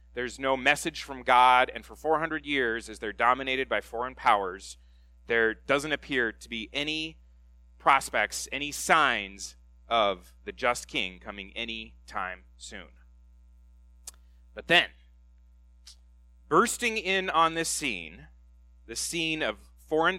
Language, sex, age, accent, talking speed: English, male, 30-49, American, 130 wpm